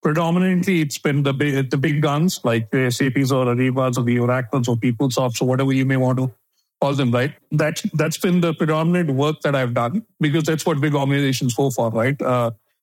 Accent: Indian